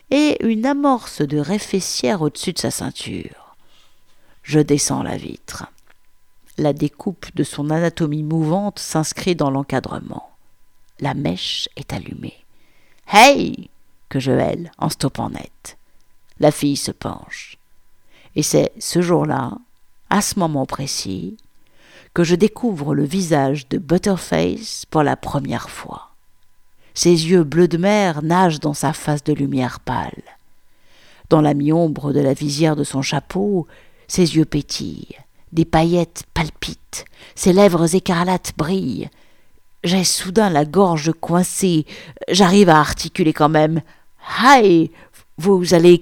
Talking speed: 135 wpm